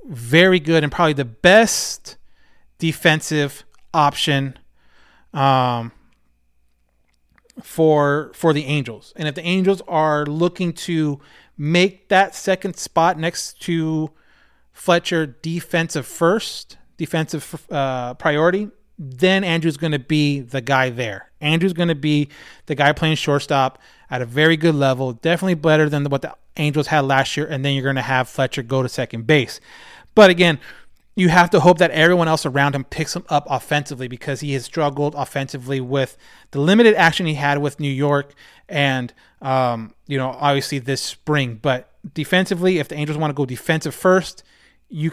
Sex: male